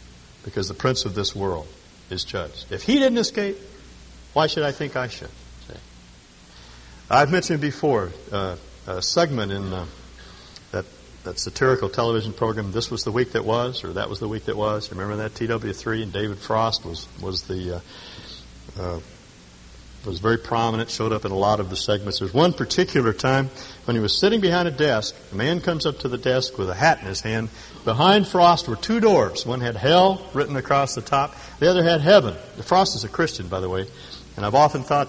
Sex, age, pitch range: male, 60-79, 90-130 Hz